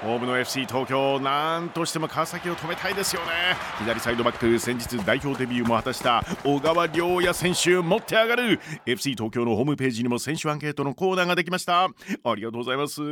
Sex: male